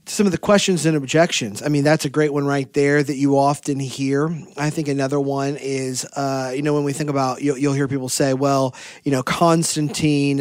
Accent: American